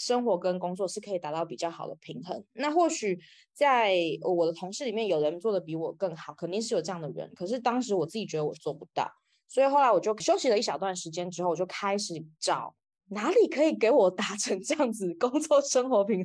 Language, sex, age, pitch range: Chinese, female, 20-39, 175-240 Hz